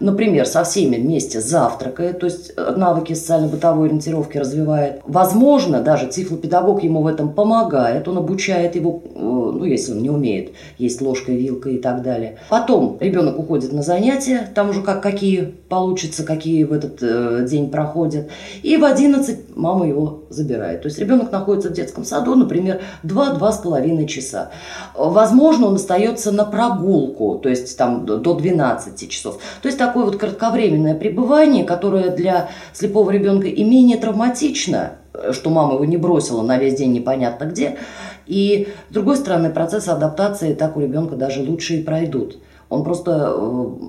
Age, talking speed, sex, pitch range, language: 20-39, 150 wpm, female, 145-200 Hz, Russian